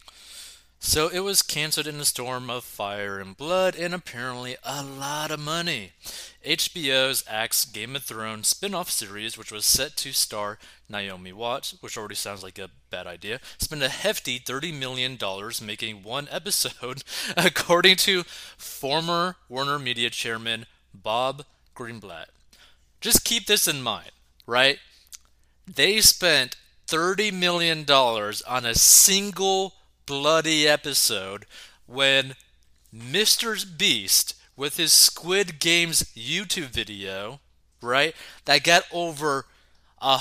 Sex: male